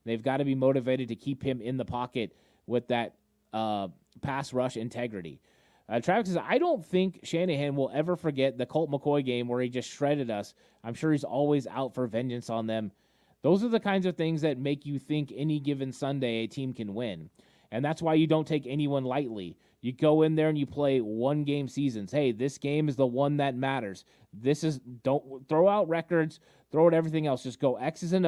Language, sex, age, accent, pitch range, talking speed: English, male, 30-49, American, 125-155 Hz, 215 wpm